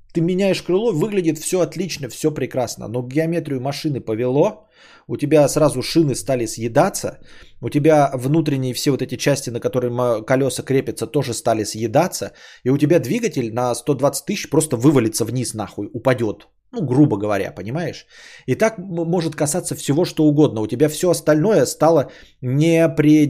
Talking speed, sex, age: 155 wpm, male, 20-39